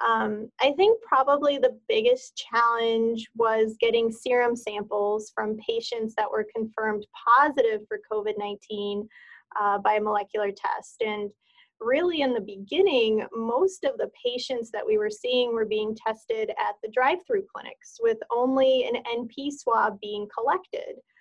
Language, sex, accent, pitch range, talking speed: English, female, American, 220-300 Hz, 145 wpm